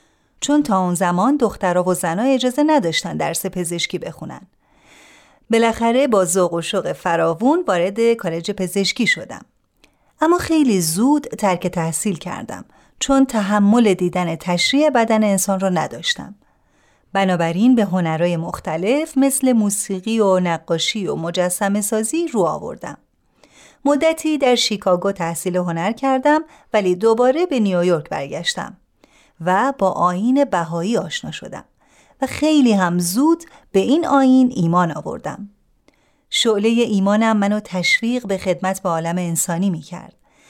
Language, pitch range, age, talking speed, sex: Persian, 180-260 Hz, 30-49, 125 wpm, female